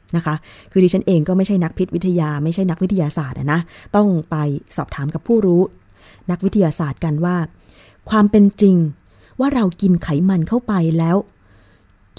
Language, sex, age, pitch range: Thai, female, 20-39, 150-215 Hz